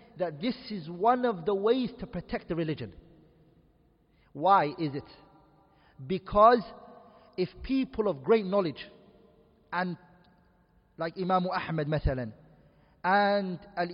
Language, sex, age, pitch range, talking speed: English, male, 40-59, 180-225 Hz, 115 wpm